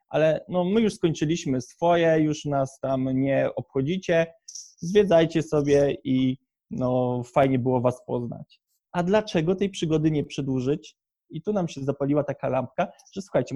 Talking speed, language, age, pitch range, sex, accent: 150 wpm, Polish, 20-39, 135-165 Hz, male, native